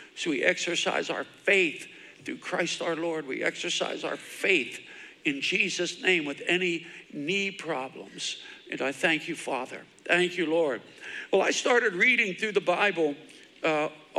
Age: 60-79